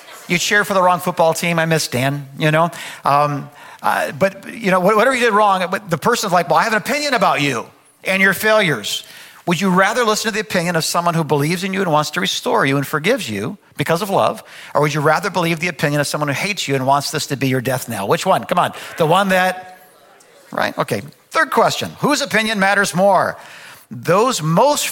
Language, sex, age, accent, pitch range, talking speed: English, male, 50-69, American, 150-195 Hz, 230 wpm